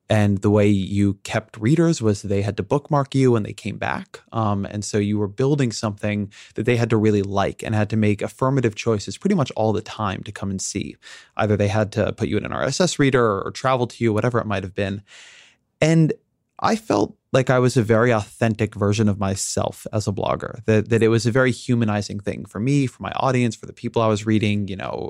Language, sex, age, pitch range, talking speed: English, male, 20-39, 105-120 Hz, 235 wpm